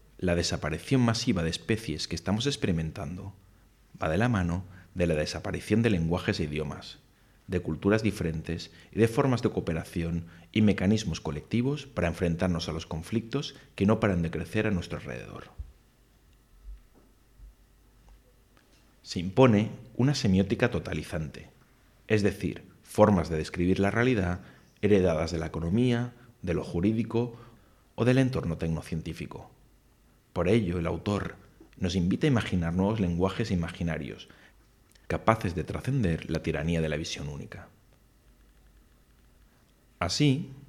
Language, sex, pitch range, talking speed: English, male, 85-110 Hz, 130 wpm